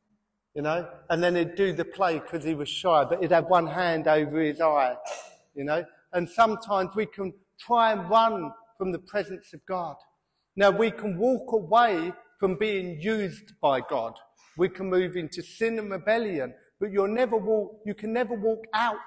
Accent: British